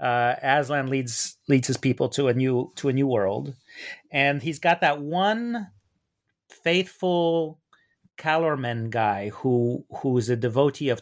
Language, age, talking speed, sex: English, 30-49, 145 wpm, male